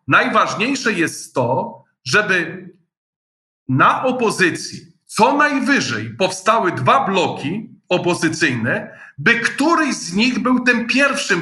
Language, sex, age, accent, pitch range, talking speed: Polish, male, 40-59, native, 170-240 Hz, 100 wpm